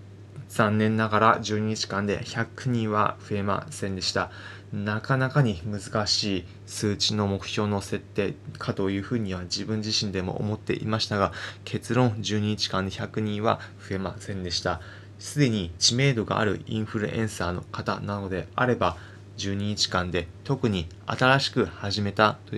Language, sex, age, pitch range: Japanese, male, 20-39, 100-115 Hz